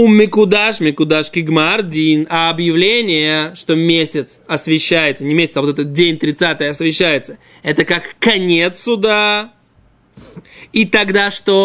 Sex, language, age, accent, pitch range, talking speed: male, Russian, 20-39, native, 155-200 Hz, 105 wpm